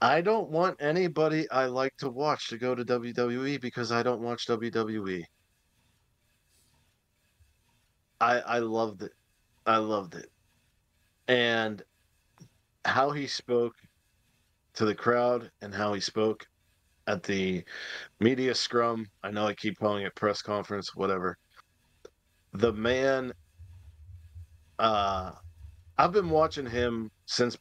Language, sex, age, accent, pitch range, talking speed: English, male, 40-59, American, 100-120 Hz, 120 wpm